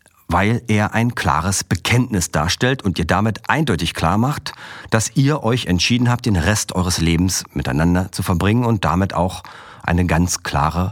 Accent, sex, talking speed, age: German, male, 165 wpm, 50-69